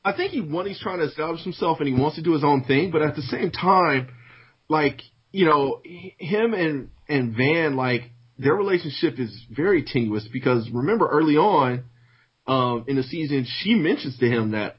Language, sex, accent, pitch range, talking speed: English, male, American, 120-150 Hz, 195 wpm